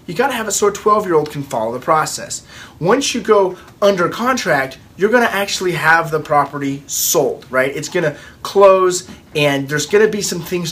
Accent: American